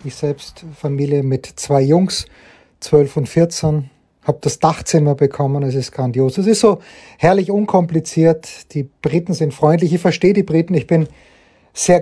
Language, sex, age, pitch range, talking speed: German, male, 30-49, 155-190 Hz, 160 wpm